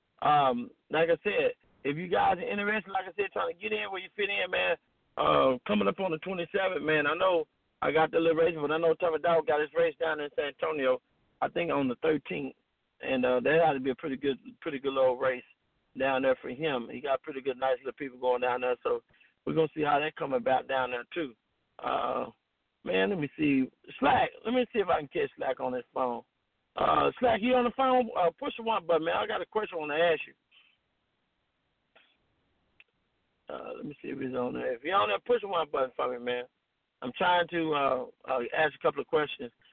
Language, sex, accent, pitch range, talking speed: English, male, American, 140-205 Hz, 235 wpm